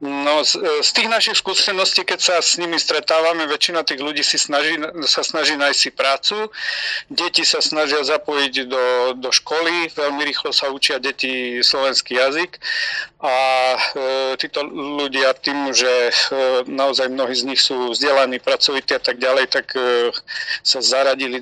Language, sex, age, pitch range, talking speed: Slovak, male, 40-59, 130-150 Hz, 155 wpm